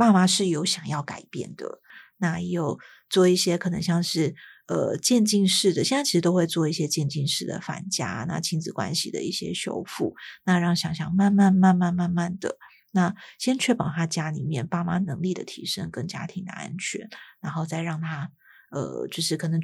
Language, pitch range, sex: Chinese, 165-190 Hz, female